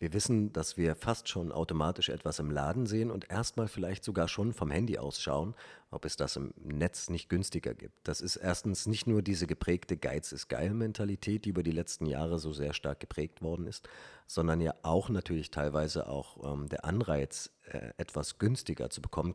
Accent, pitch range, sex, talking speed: German, 75-95 Hz, male, 195 wpm